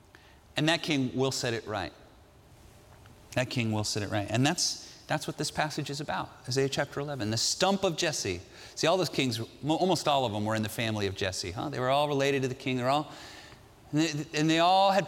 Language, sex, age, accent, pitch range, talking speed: Dutch, male, 30-49, American, 105-150 Hz, 230 wpm